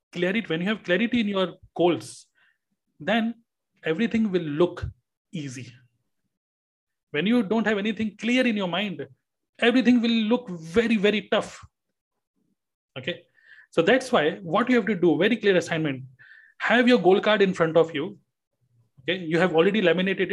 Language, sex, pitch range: Hindi, male, 165-220 Hz